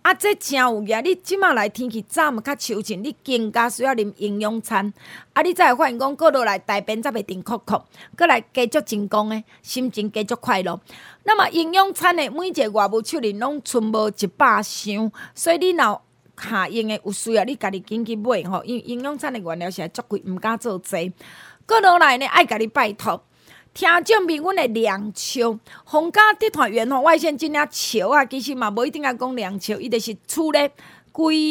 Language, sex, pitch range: Chinese, female, 215-315 Hz